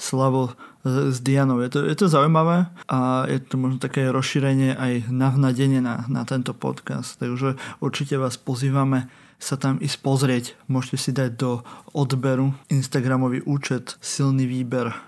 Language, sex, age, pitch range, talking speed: Slovak, male, 20-39, 130-155 Hz, 145 wpm